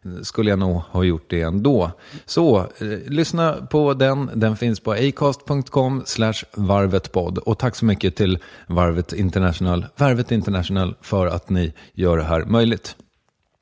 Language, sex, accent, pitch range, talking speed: English, male, Swedish, 95-130 Hz, 150 wpm